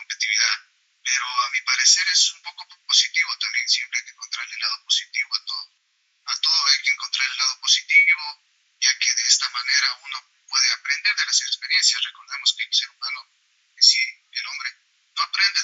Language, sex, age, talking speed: Spanish, male, 30-49, 190 wpm